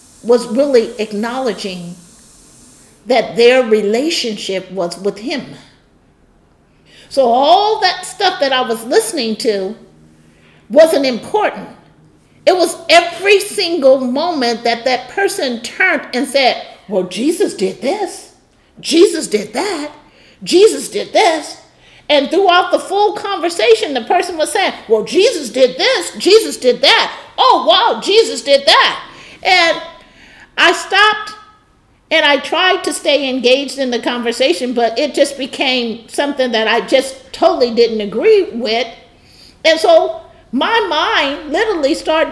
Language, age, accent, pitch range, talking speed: English, 50-69, American, 240-365 Hz, 130 wpm